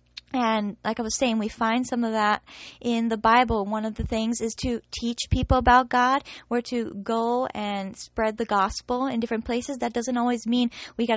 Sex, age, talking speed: female, 20-39, 210 wpm